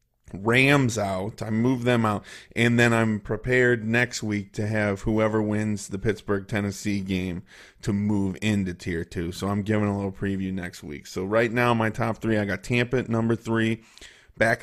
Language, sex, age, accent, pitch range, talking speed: English, male, 30-49, American, 100-115 Hz, 190 wpm